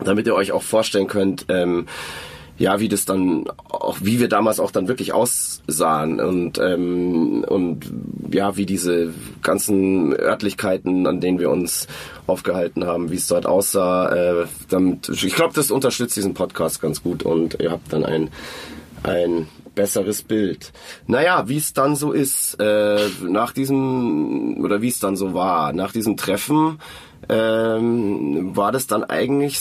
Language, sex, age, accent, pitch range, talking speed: German, male, 30-49, German, 95-130 Hz, 160 wpm